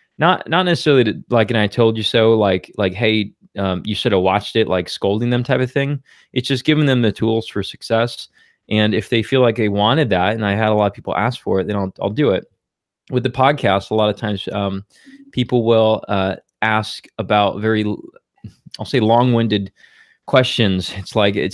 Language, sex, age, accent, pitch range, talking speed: English, male, 20-39, American, 100-120 Hz, 215 wpm